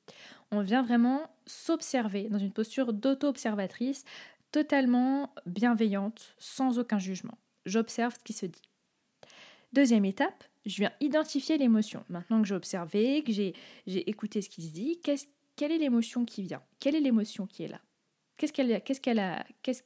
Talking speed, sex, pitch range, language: 160 wpm, female, 200-245 Hz, French